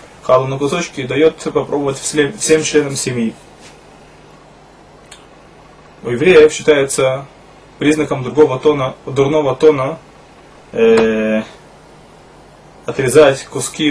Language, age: Russian, 20-39